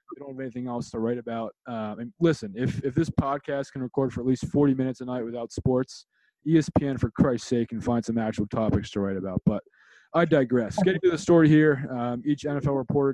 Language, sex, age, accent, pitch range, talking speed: English, male, 20-39, American, 115-140 Hz, 230 wpm